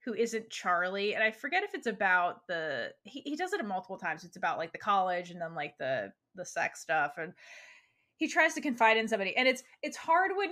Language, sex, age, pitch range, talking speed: English, female, 20-39, 200-260 Hz, 230 wpm